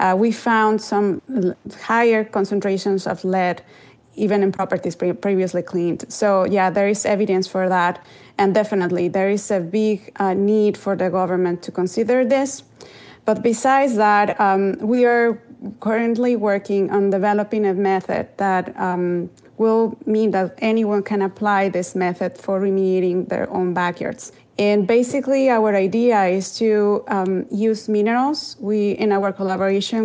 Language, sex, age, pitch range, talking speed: English, female, 30-49, 185-215 Hz, 150 wpm